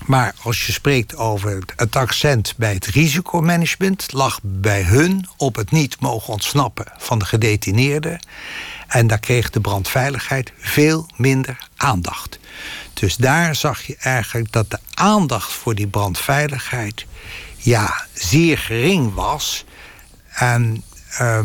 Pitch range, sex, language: 115-140 Hz, male, Dutch